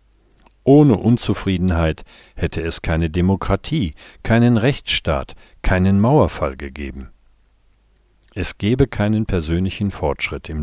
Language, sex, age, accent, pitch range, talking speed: German, male, 50-69, German, 85-110 Hz, 95 wpm